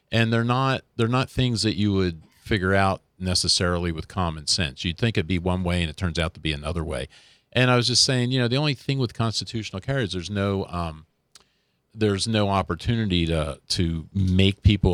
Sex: male